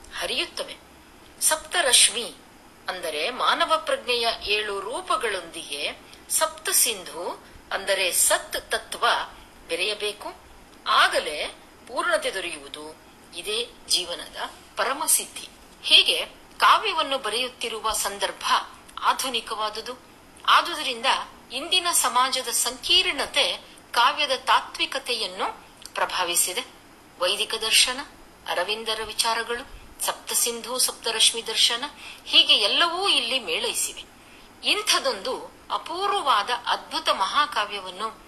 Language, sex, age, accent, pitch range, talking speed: Kannada, female, 50-69, native, 215-325 Hz, 75 wpm